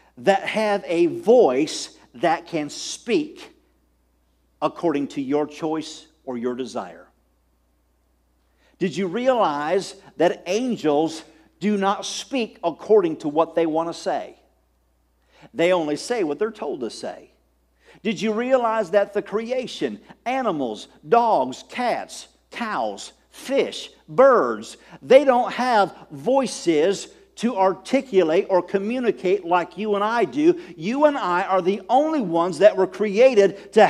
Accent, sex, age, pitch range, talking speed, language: American, male, 50-69, 160-250 Hz, 130 wpm, English